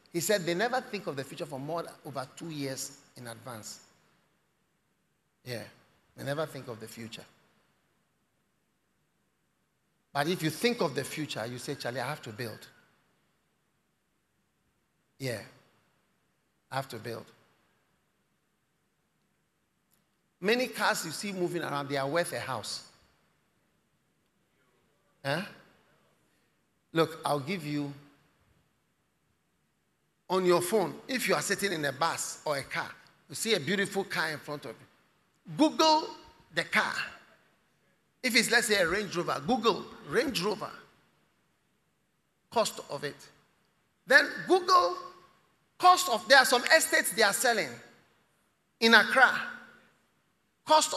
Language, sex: English, male